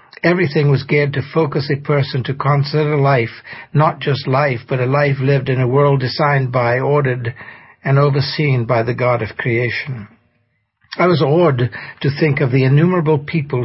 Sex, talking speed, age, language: male, 170 wpm, 60-79, English